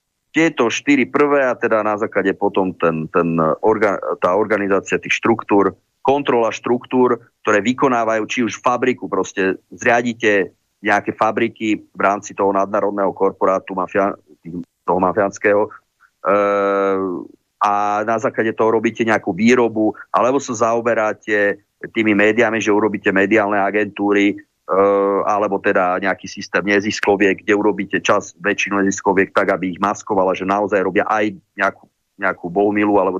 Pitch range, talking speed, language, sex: 95-115 Hz, 125 wpm, Slovak, male